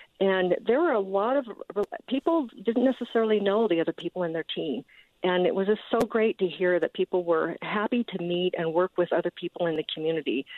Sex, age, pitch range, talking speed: female, 50-69, 165-195 Hz, 215 wpm